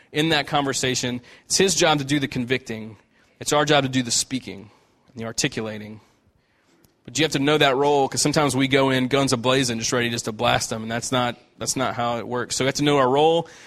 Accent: American